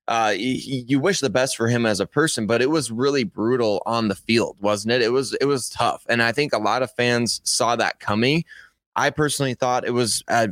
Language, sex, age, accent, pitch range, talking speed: English, male, 20-39, American, 110-130 Hz, 240 wpm